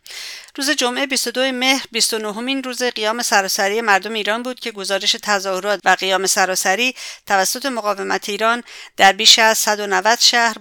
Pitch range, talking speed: 185-225 Hz, 140 wpm